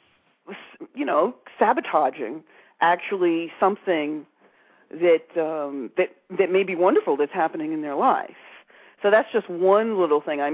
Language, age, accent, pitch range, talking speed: English, 40-59, American, 160-235 Hz, 135 wpm